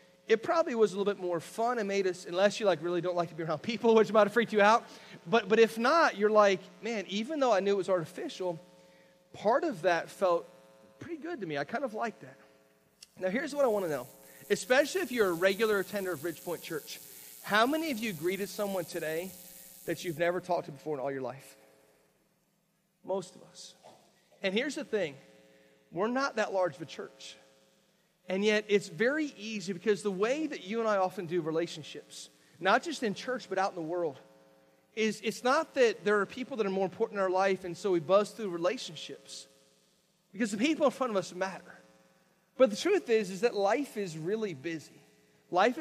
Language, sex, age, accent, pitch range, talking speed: English, male, 40-59, American, 175-225 Hz, 215 wpm